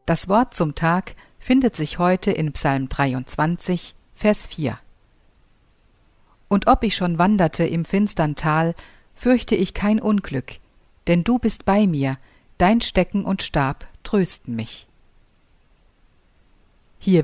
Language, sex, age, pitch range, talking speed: German, female, 50-69, 150-195 Hz, 125 wpm